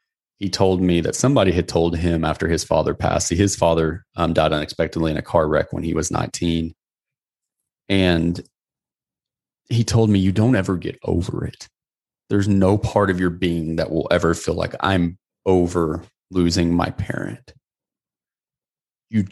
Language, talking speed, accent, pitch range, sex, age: English, 160 wpm, American, 85-100 Hz, male, 30-49